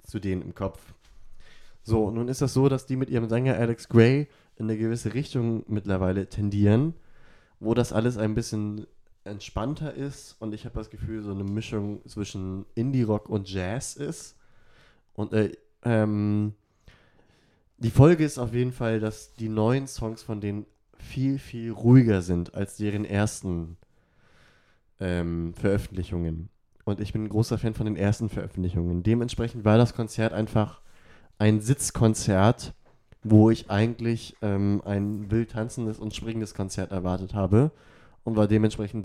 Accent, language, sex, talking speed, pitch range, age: German, German, male, 150 wpm, 100-115 Hz, 30-49